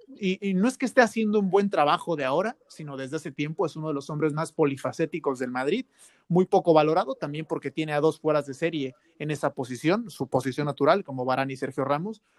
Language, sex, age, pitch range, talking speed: Spanish, male, 30-49, 145-185 Hz, 230 wpm